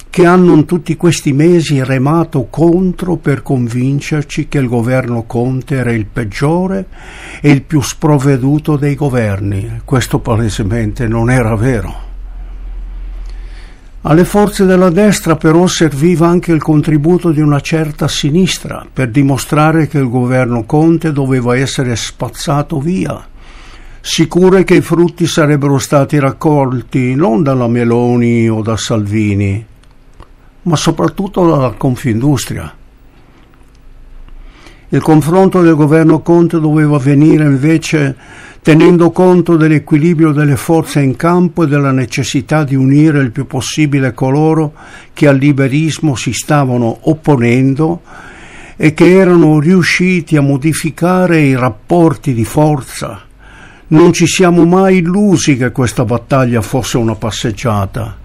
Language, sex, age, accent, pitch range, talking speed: Italian, male, 60-79, native, 125-165 Hz, 125 wpm